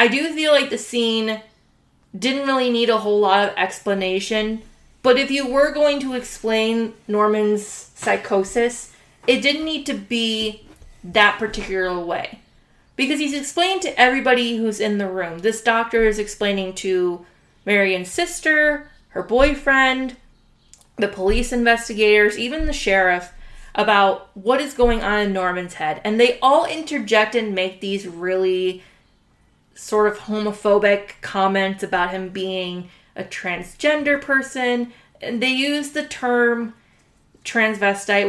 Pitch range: 195-240 Hz